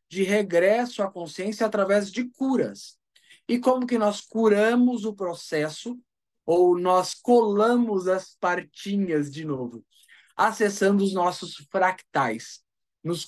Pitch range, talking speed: 155-215 Hz, 120 wpm